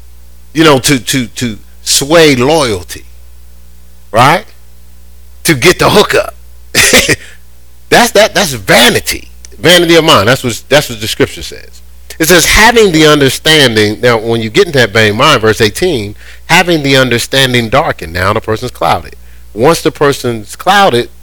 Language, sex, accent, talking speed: English, male, American, 150 wpm